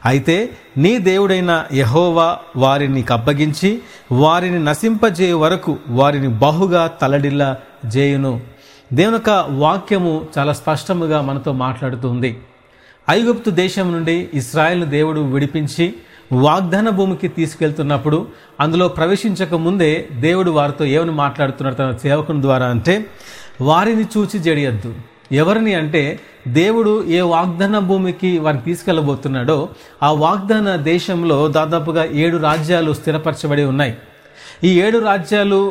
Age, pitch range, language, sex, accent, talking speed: 40-59, 140-190 Hz, Telugu, male, native, 100 wpm